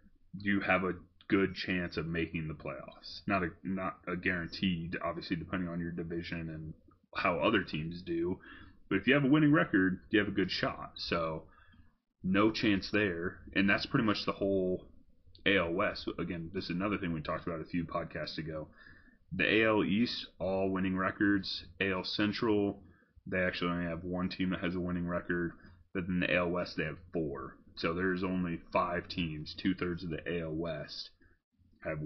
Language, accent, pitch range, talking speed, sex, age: English, American, 85-95 Hz, 185 wpm, male, 30-49